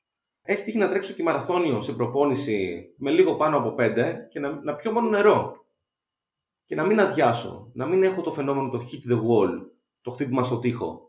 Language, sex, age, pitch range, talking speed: Greek, male, 30-49, 110-165 Hz, 195 wpm